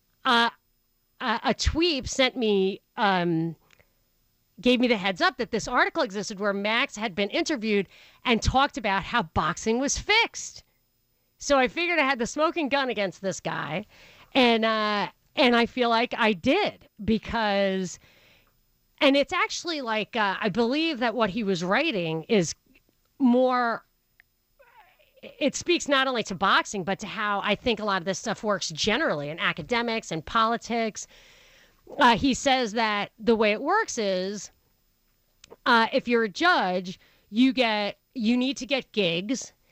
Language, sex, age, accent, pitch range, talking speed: English, female, 40-59, American, 205-260 Hz, 155 wpm